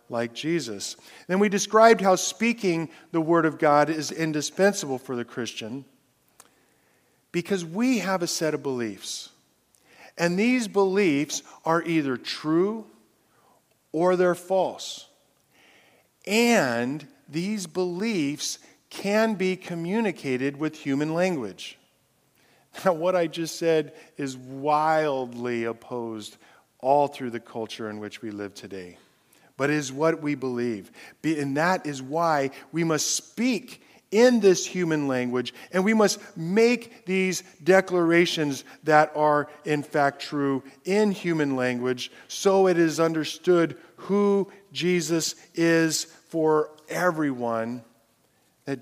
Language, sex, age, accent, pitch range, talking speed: English, male, 50-69, American, 135-185 Hz, 120 wpm